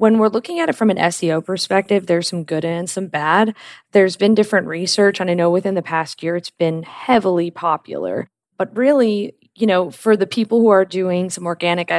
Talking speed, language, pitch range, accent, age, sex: 210 wpm, English, 165-200 Hz, American, 20-39, female